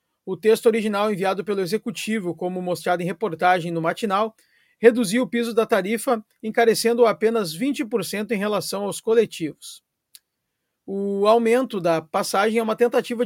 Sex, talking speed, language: male, 140 wpm, Portuguese